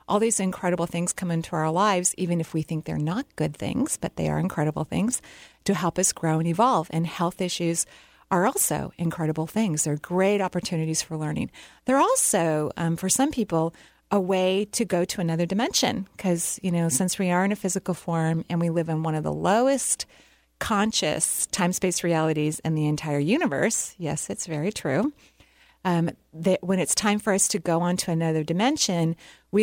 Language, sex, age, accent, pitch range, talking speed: English, female, 40-59, American, 160-200 Hz, 190 wpm